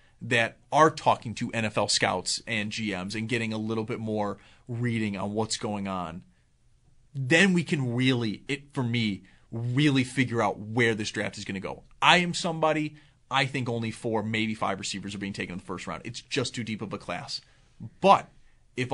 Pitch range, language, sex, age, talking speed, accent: 110-140 Hz, English, male, 30-49, 195 wpm, American